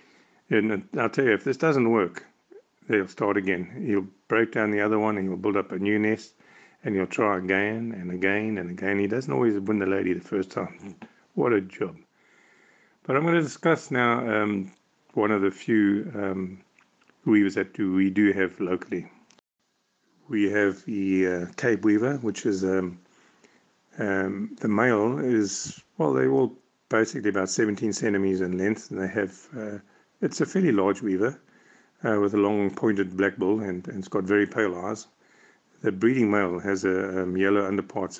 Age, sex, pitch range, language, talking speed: 50-69, male, 95-105 Hz, English, 180 wpm